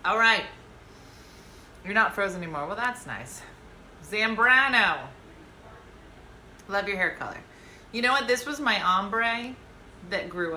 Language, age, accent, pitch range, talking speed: English, 30-49, American, 165-230 Hz, 130 wpm